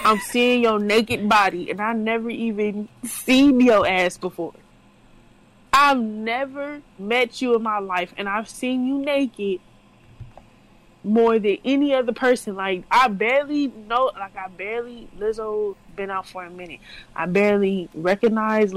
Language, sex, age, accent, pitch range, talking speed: English, female, 20-39, American, 195-245 Hz, 145 wpm